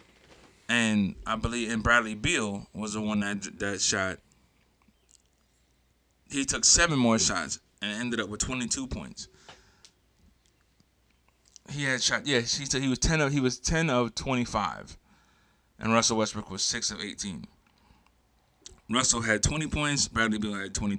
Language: English